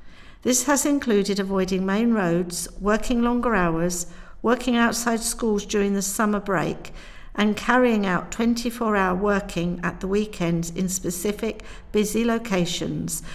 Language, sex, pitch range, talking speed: English, female, 180-230 Hz, 125 wpm